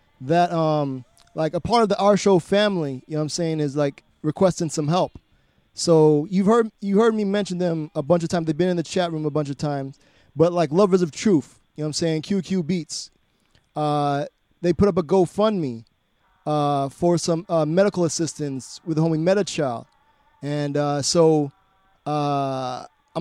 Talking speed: 185 wpm